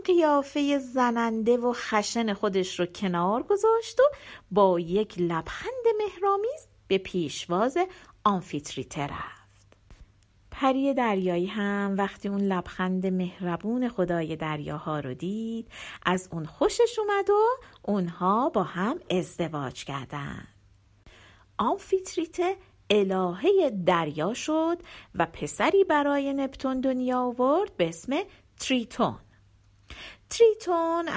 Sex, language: female, Persian